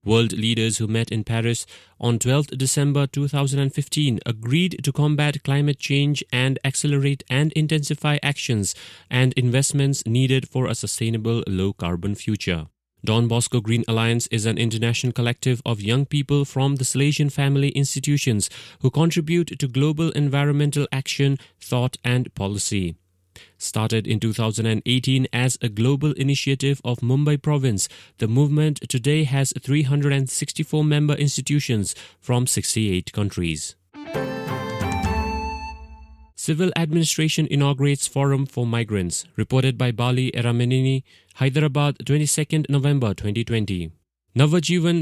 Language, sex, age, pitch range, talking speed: English, male, 30-49, 110-140 Hz, 115 wpm